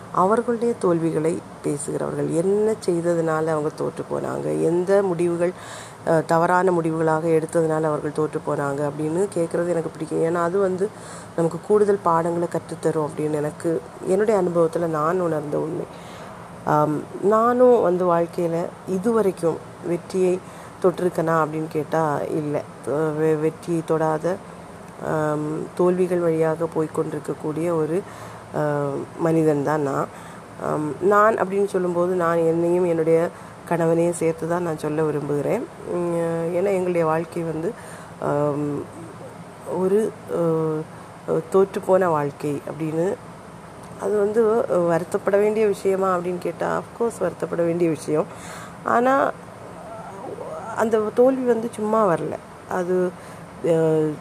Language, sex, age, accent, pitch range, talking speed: Tamil, female, 30-49, native, 160-185 Hz, 100 wpm